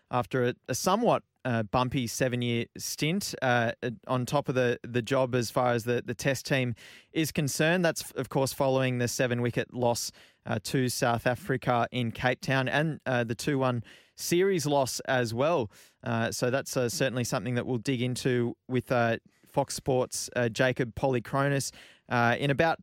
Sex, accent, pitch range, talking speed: male, Australian, 120-140 Hz, 175 wpm